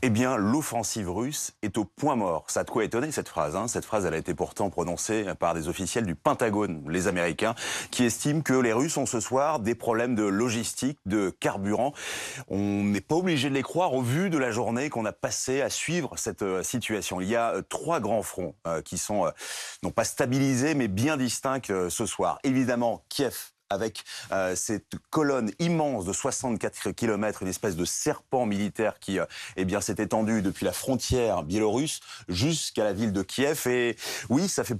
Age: 30-49